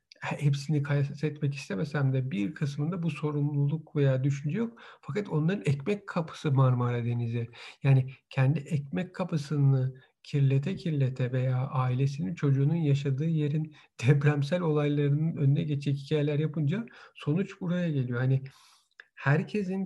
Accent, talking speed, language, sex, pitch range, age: native, 120 wpm, Turkish, male, 140-165 Hz, 50-69